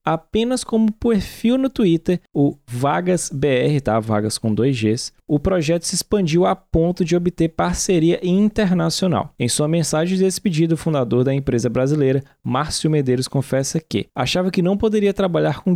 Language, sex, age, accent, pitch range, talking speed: Portuguese, male, 20-39, Brazilian, 125-175 Hz, 160 wpm